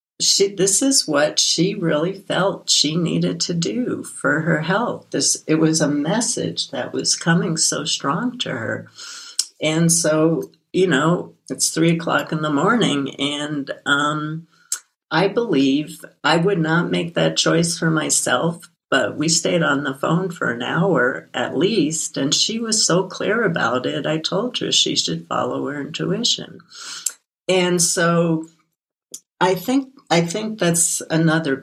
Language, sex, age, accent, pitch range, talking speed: English, female, 60-79, American, 135-180 Hz, 155 wpm